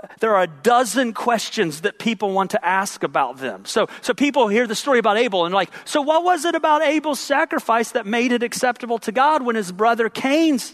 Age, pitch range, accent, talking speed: 40-59, 220-300 Hz, American, 220 wpm